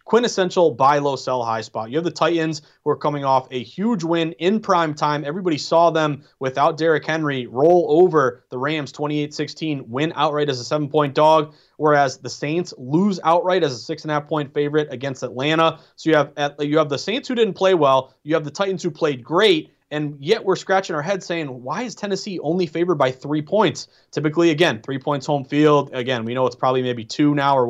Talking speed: 200 wpm